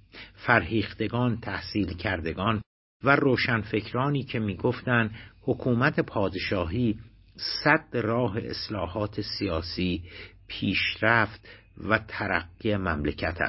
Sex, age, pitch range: male, 60-79, 100-125 Hz